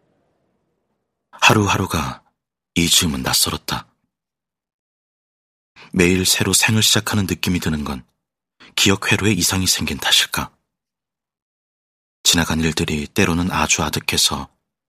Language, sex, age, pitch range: Korean, male, 30-49, 80-105 Hz